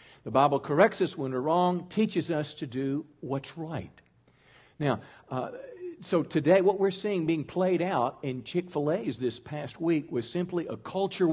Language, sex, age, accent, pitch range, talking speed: English, male, 50-69, American, 120-160 Hz, 175 wpm